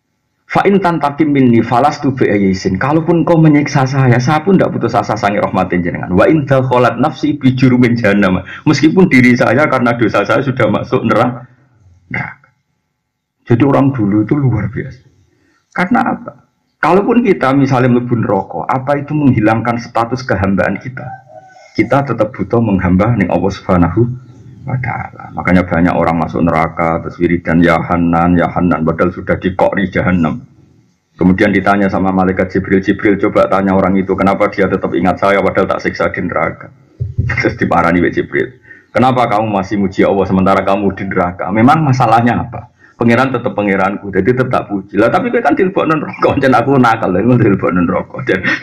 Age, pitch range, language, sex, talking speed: 50-69, 95-130 Hz, Indonesian, male, 160 wpm